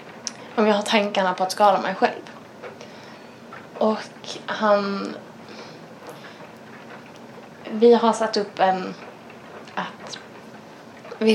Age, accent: 20-39, Norwegian